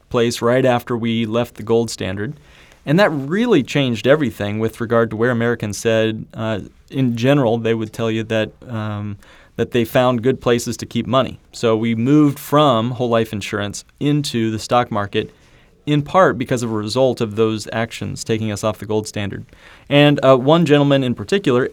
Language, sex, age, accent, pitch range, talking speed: English, male, 30-49, American, 110-140 Hz, 185 wpm